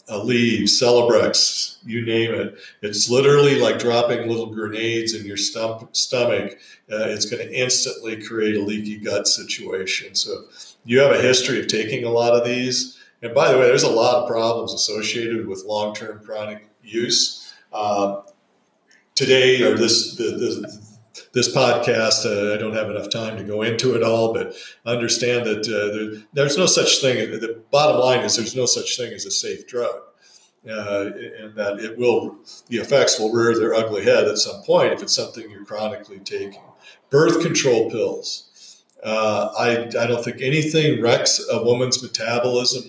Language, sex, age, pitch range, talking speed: English, male, 50-69, 110-125 Hz, 175 wpm